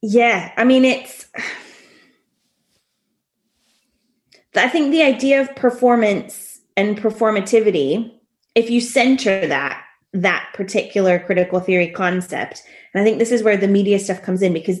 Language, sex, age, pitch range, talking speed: English, female, 20-39, 175-215 Hz, 135 wpm